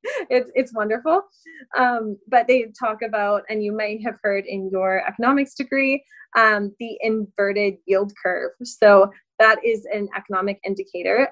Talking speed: 150 wpm